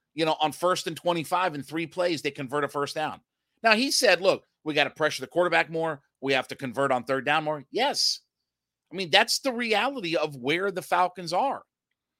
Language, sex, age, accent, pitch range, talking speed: English, male, 50-69, American, 155-215 Hz, 215 wpm